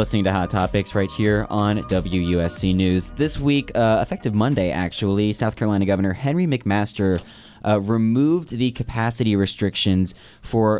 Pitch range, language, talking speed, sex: 95-115 Hz, English, 145 wpm, male